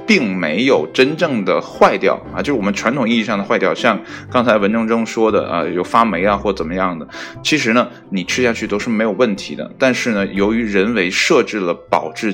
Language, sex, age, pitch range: Chinese, male, 20-39, 100-120 Hz